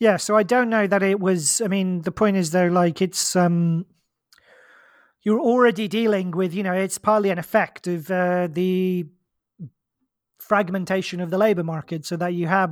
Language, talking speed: English, 185 wpm